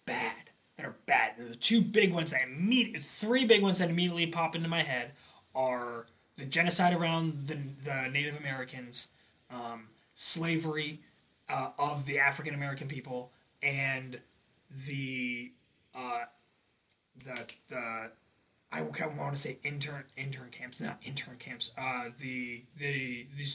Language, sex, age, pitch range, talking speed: English, male, 20-39, 130-180 Hz, 140 wpm